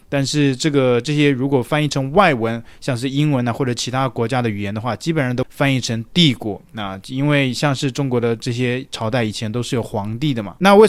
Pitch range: 120-155 Hz